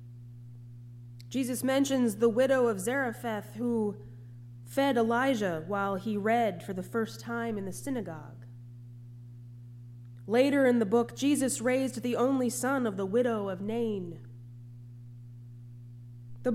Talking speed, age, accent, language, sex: 125 wpm, 20-39, American, English, female